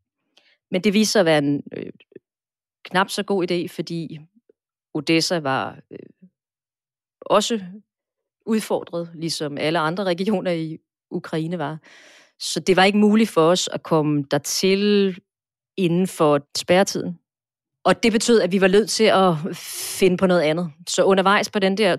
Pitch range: 150-190 Hz